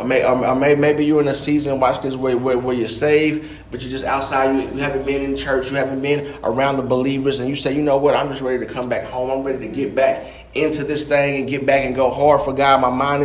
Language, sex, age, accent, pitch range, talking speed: English, male, 30-49, American, 130-145 Hz, 285 wpm